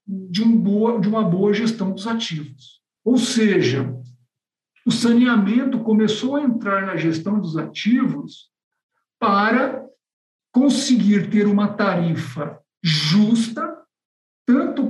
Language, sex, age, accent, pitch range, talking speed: Portuguese, male, 60-79, Brazilian, 180-235 Hz, 100 wpm